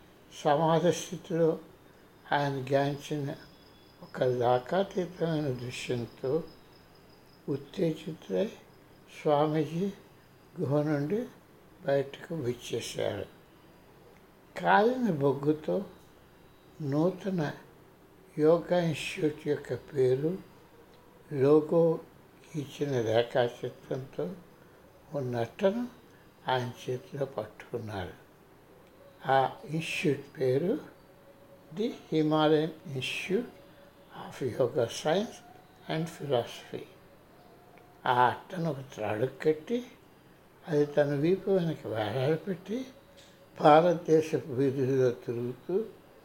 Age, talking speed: 60-79, 70 wpm